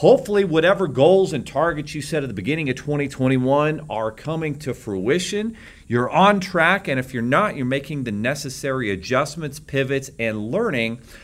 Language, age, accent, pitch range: English, 40-59, American, 125-155 Hz